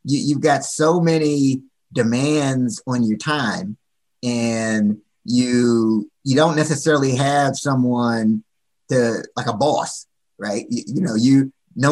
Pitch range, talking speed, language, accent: 120-150 Hz, 130 wpm, English, American